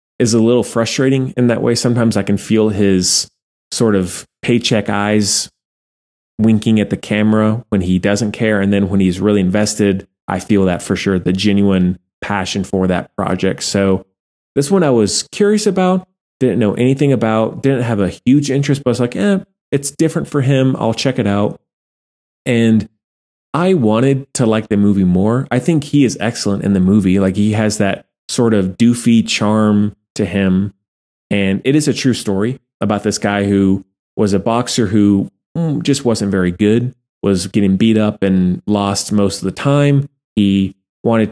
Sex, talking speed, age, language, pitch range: male, 185 wpm, 20-39, English, 100-120 Hz